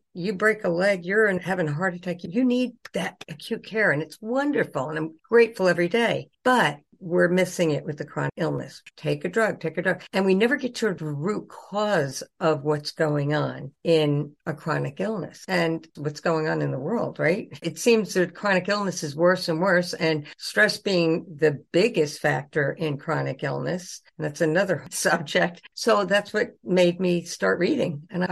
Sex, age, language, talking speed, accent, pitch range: female, 60-79, English, 195 wpm, American, 155-195 Hz